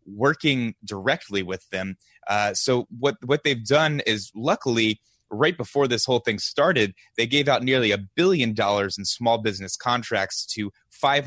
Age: 20-39